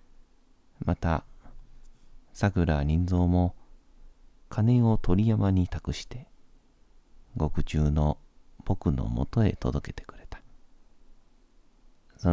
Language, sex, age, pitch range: Japanese, male, 40-59, 75-95 Hz